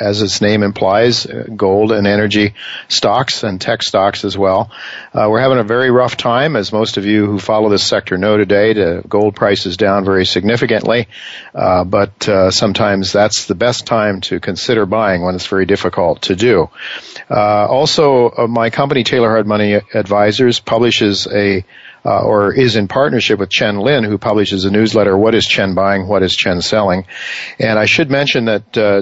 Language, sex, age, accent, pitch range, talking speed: English, male, 50-69, American, 100-115 Hz, 190 wpm